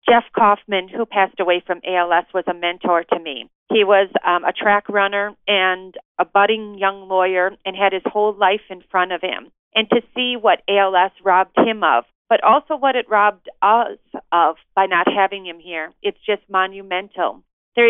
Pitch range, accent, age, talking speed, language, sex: 190-240 Hz, American, 40-59, 190 wpm, English, female